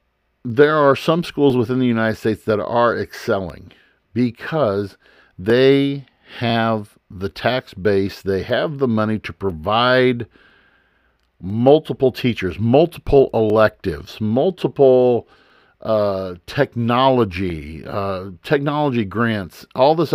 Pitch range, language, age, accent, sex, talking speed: 105-135 Hz, English, 50-69, American, male, 105 wpm